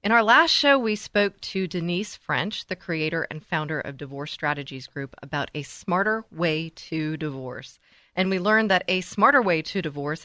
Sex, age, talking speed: female, 40-59, 185 wpm